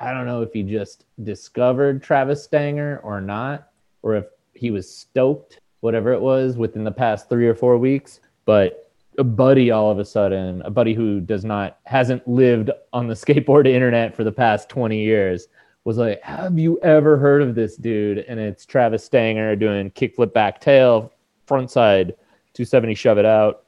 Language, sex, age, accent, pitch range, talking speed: English, male, 30-49, American, 105-125 Hz, 180 wpm